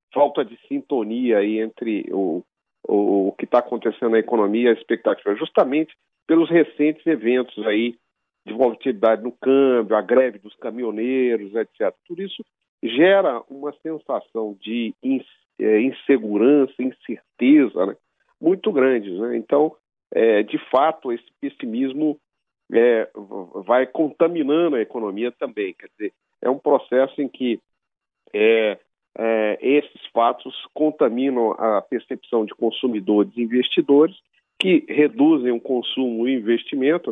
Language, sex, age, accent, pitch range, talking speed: Portuguese, male, 50-69, Brazilian, 115-165 Hz, 120 wpm